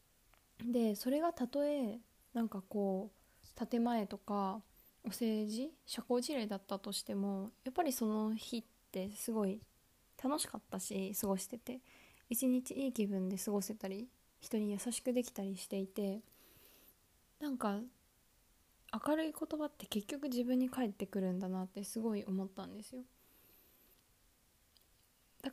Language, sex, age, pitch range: Japanese, female, 20-39, 200-245 Hz